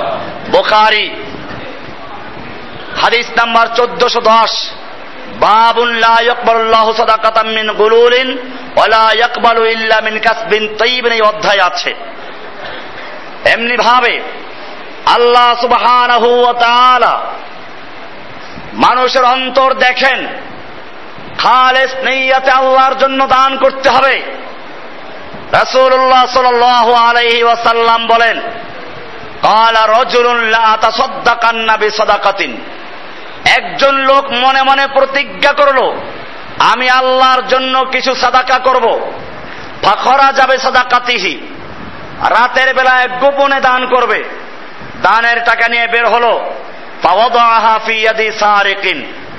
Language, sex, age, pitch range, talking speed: Bengali, male, 50-69, 230-260 Hz, 45 wpm